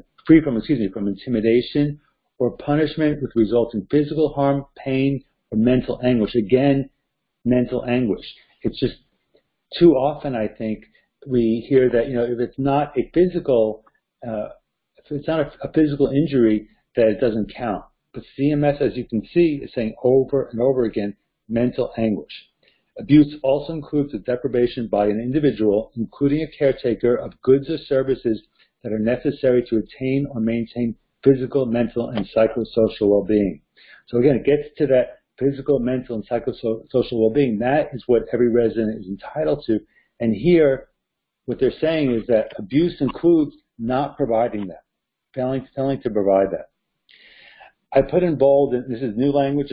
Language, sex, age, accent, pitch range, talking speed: English, male, 50-69, American, 115-145 Hz, 160 wpm